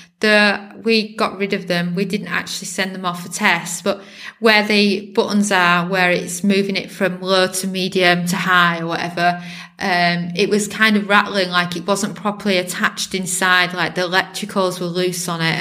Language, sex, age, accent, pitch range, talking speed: English, female, 20-39, British, 180-205 Hz, 190 wpm